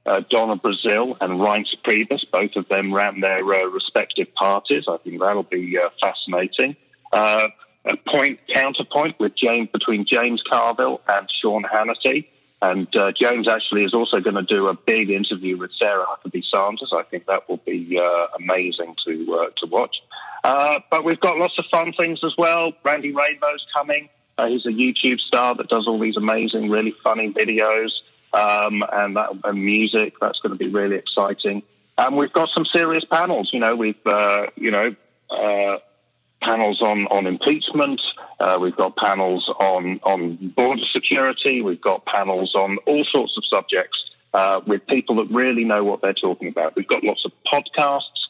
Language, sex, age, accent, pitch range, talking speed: English, male, 40-59, British, 100-125 Hz, 180 wpm